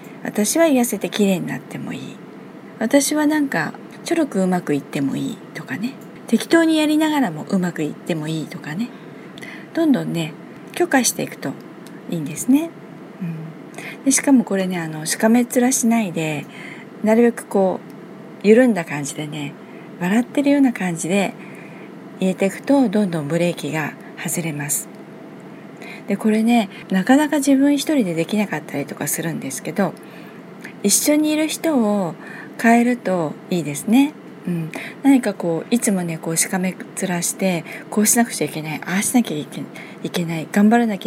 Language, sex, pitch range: Japanese, female, 165-245 Hz